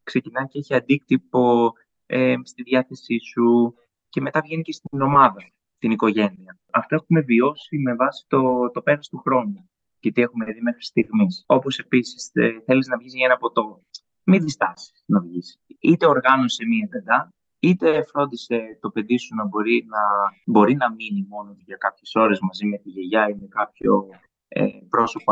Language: Greek